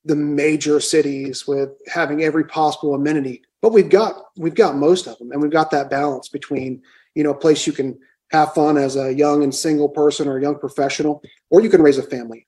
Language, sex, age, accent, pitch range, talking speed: English, male, 30-49, American, 135-155 Hz, 220 wpm